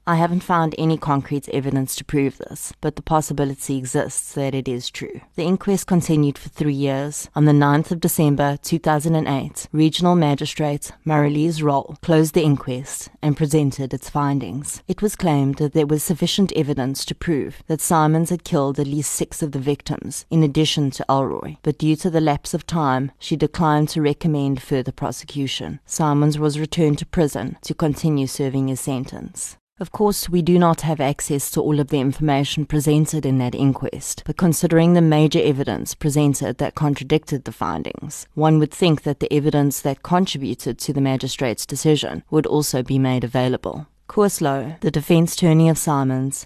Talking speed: 175 wpm